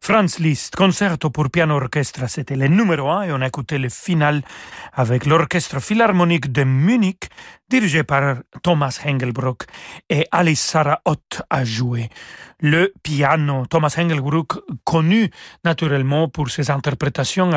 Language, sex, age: French, male, 40-59